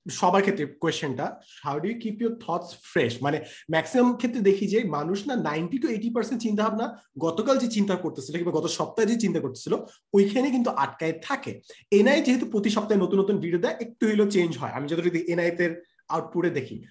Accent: native